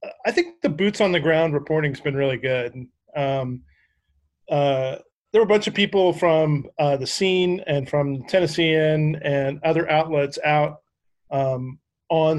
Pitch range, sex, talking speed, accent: 140-175 Hz, male, 160 wpm, American